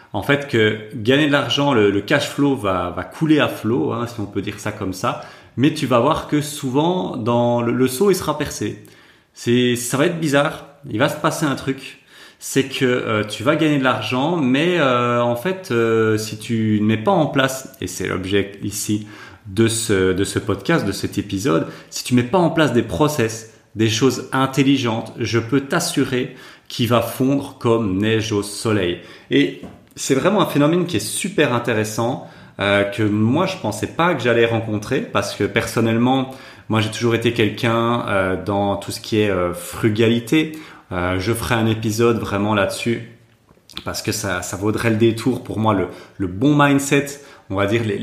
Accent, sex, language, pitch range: French, male, French, 100-135 Hz